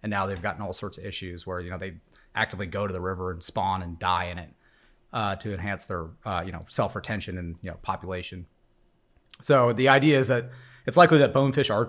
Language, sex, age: English, male, 30-49